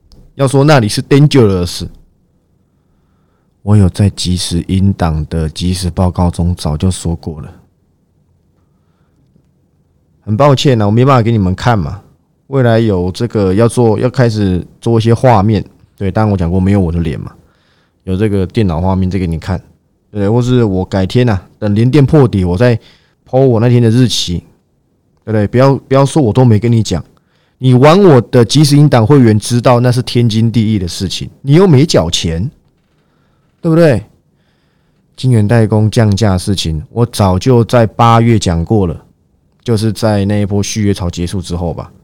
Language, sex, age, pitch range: Chinese, male, 20-39, 90-125 Hz